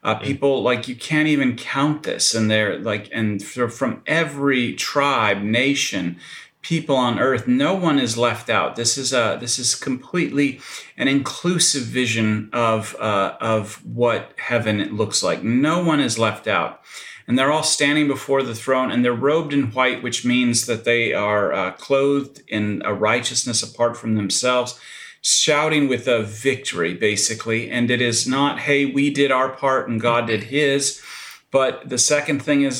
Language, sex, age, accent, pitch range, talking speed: English, male, 30-49, American, 115-140 Hz, 170 wpm